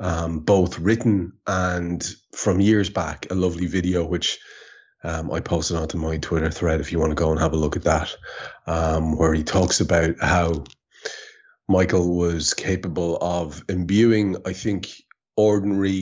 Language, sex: English, male